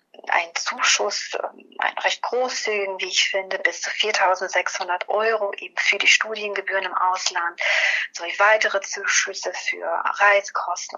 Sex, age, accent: female, 30-49, German